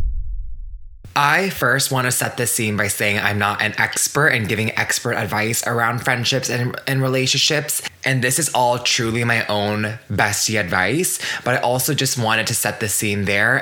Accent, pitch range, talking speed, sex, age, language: American, 110-130 Hz, 180 wpm, male, 20-39, English